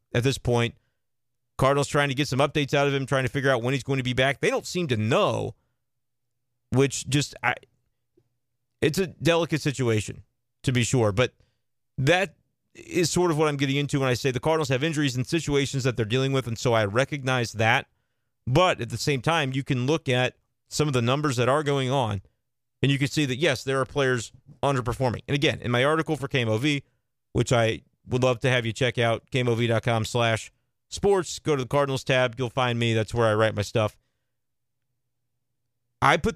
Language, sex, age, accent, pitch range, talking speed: English, male, 30-49, American, 120-140 Hz, 210 wpm